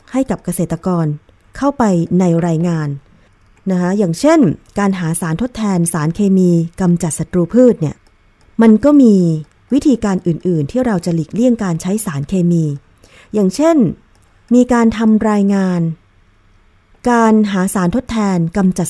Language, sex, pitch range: Thai, female, 160-205 Hz